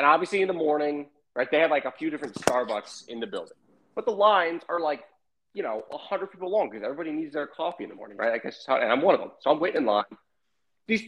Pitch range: 155-220 Hz